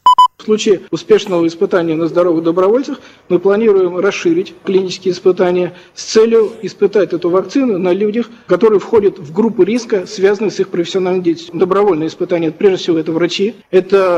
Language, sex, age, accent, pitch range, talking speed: Russian, male, 50-69, native, 175-220 Hz, 150 wpm